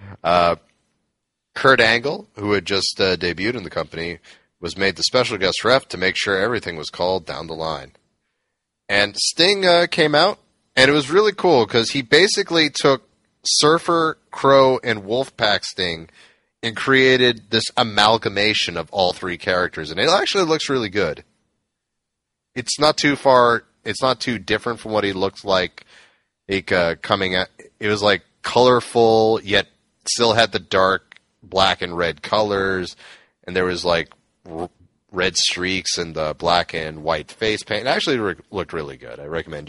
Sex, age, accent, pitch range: male, 30-49, American, 90-130 Hz